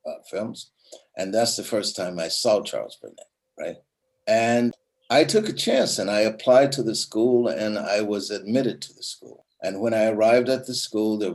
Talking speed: 200 wpm